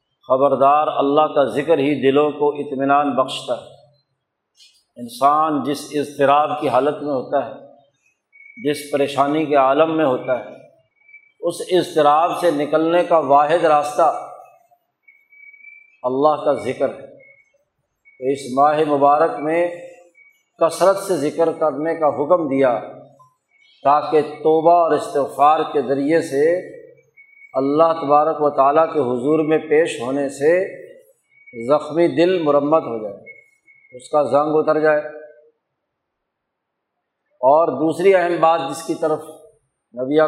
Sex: male